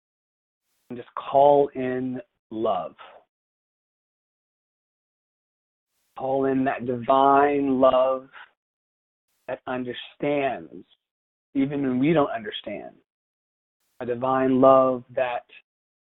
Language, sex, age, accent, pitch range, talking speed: English, male, 30-49, American, 125-145 Hz, 80 wpm